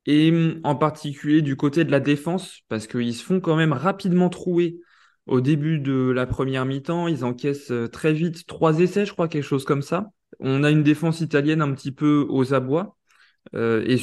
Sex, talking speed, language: male, 195 wpm, French